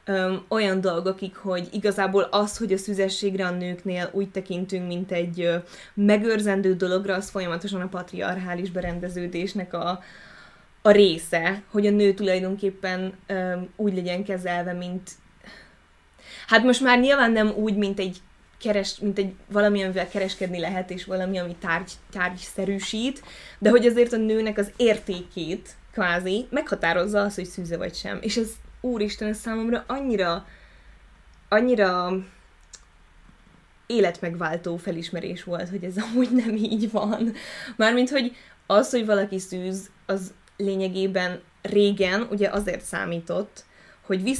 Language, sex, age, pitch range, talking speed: Hungarian, female, 20-39, 180-205 Hz, 130 wpm